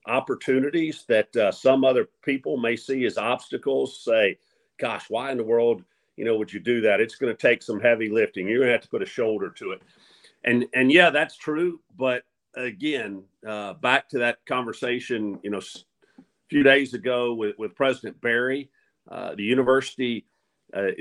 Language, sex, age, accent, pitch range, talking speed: English, male, 50-69, American, 115-135 Hz, 185 wpm